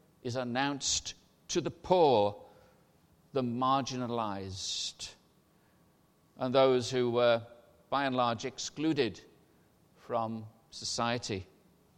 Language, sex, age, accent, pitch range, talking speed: English, male, 60-79, British, 115-155 Hz, 85 wpm